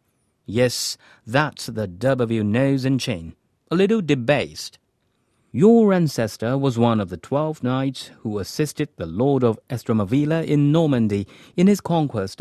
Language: Chinese